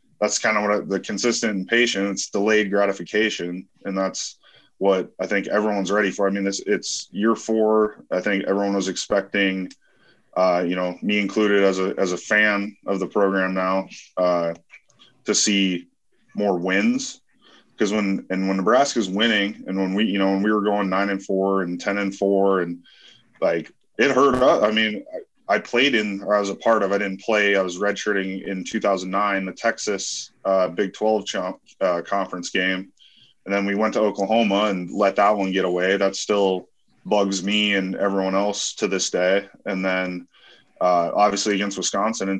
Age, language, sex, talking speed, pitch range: 20-39, English, male, 190 wpm, 95-105 Hz